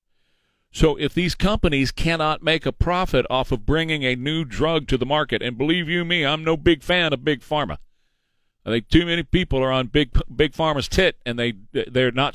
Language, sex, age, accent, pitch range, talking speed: English, male, 40-59, American, 125-160 Hz, 210 wpm